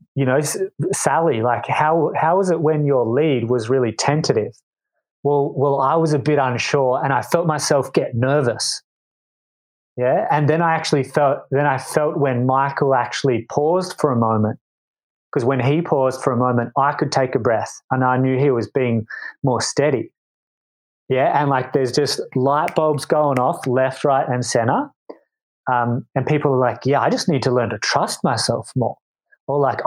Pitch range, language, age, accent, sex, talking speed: 125-150 Hz, English, 30-49, Australian, male, 185 wpm